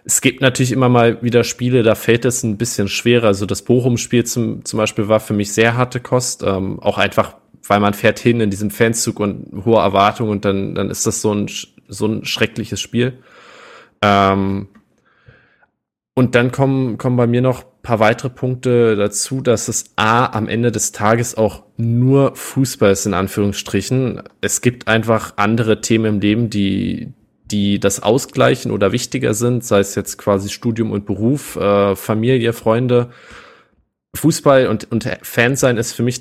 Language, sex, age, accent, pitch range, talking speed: German, male, 20-39, German, 105-125 Hz, 175 wpm